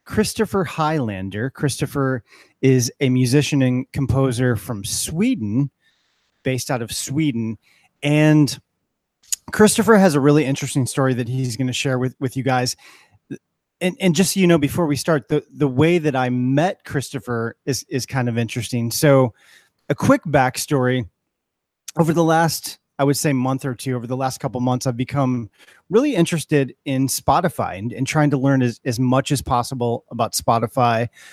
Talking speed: 165 wpm